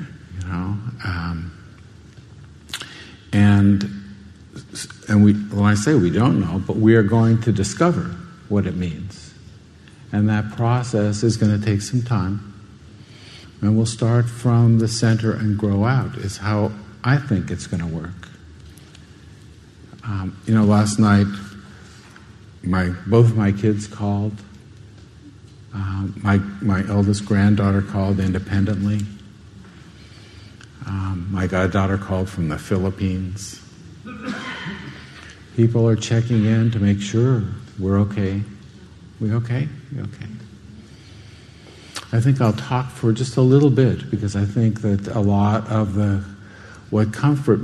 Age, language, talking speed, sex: 50-69, English, 130 wpm, male